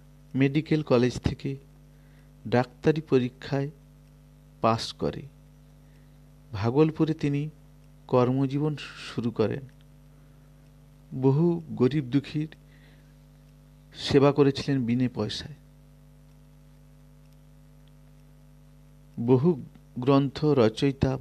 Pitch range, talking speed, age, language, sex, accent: 135-145 Hz, 35 wpm, 50-69, Bengali, male, native